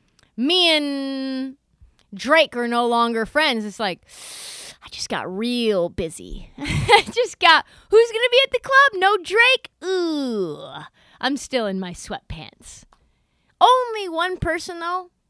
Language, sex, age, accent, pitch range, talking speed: English, female, 30-49, American, 230-335 Hz, 140 wpm